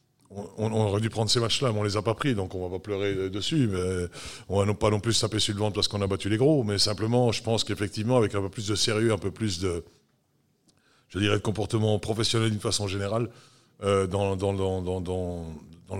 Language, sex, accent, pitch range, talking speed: French, male, French, 95-115 Hz, 235 wpm